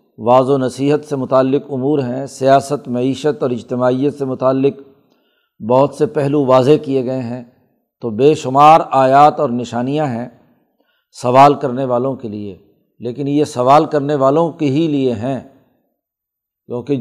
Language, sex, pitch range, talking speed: Urdu, male, 130-155 Hz, 150 wpm